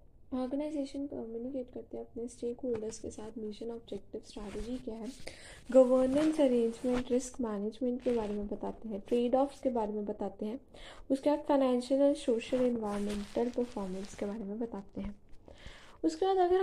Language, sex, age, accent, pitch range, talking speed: Hindi, female, 10-29, native, 215-270 Hz, 160 wpm